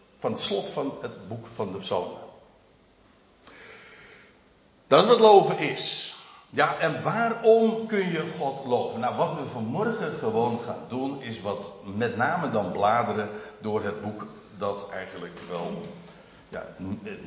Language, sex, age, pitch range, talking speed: Dutch, male, 60-79, 105-175 Hz, 145 wpm